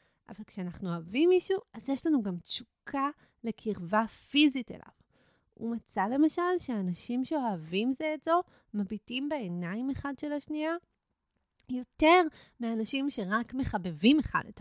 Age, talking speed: 30-49, 125 wpm